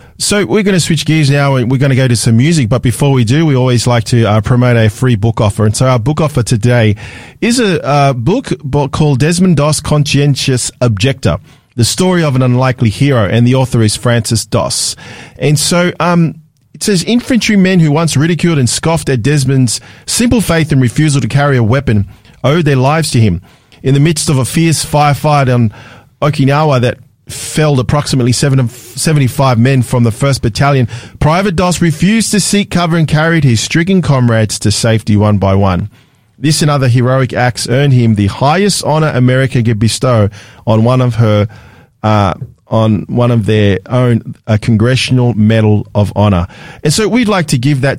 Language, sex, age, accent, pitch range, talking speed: English, male, 40-59, Australian, 120-155 Hz, 190 wpm